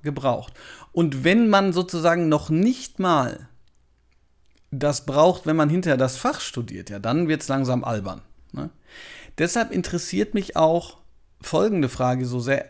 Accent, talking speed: German, 140 wpm